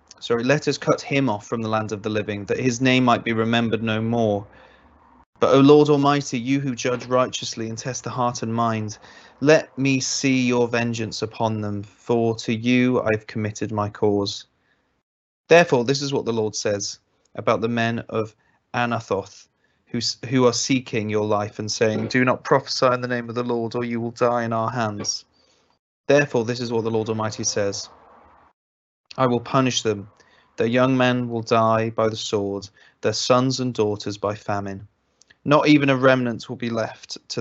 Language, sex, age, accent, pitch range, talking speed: English, male, 30-49, British, 105-125 Hz, 190 wpm